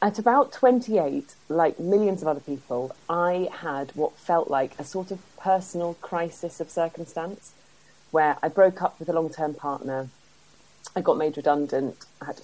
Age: 30-49